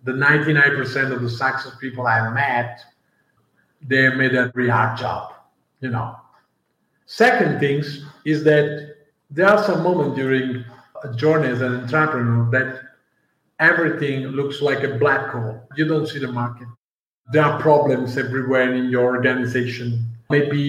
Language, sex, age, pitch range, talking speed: English, male, 50-69, 130-160 Hz, 150 wpm